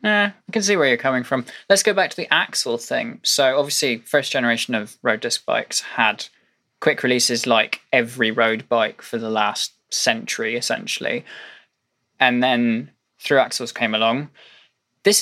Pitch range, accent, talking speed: 115-135 Hz, British, 160 wpm